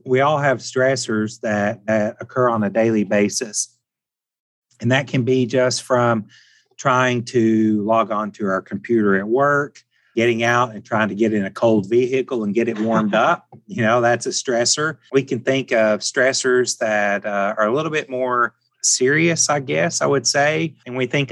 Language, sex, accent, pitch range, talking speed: English, male, American, 105-125 Hz, 190 wpm